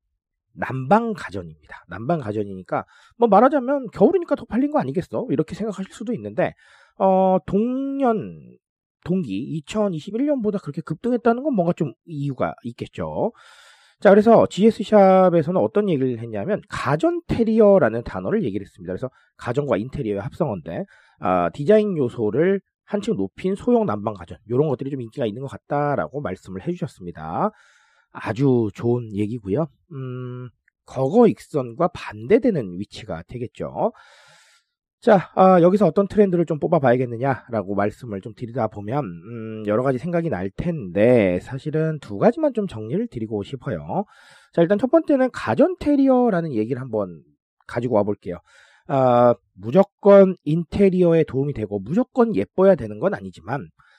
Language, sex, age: Korean, male, 40-59